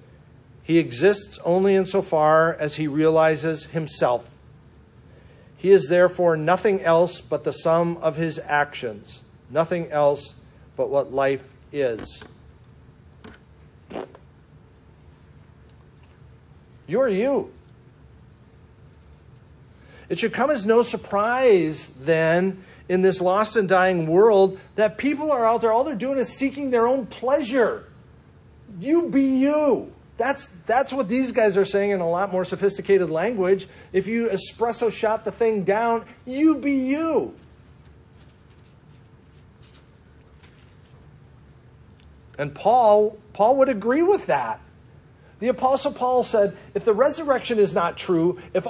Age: 50-69